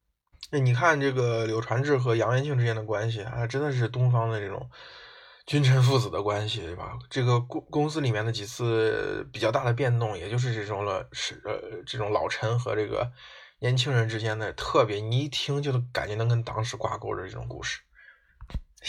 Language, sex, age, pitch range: Chinese, male, 20-39, 110-135 Hz